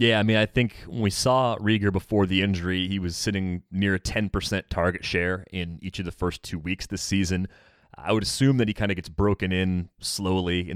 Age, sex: 30-49, male